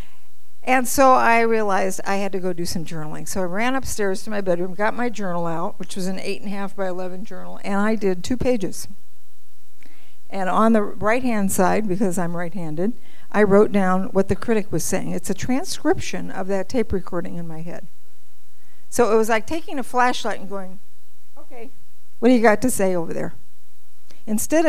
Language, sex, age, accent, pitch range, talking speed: English, female, 50-69, American, 190-235 Hz, 200 wpm